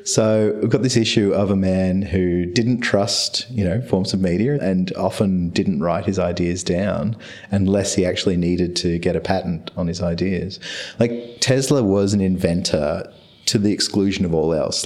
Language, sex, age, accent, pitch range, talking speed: English, male, 30-49, Australian, 90-105 Hz, 180 wpm